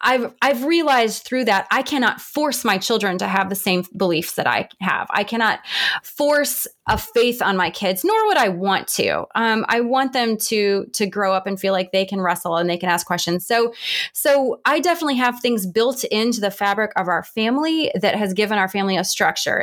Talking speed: 215 wpm